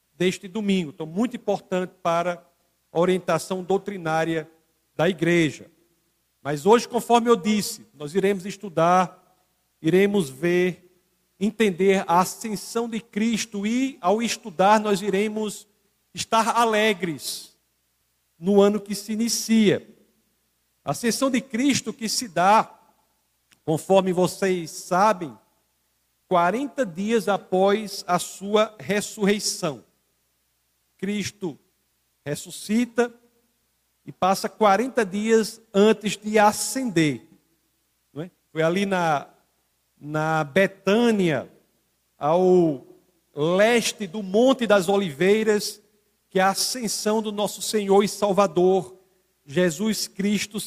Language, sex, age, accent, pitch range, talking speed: Portuguese, male, 50-69, Brazilian, 175-215 Hz, 100 wpm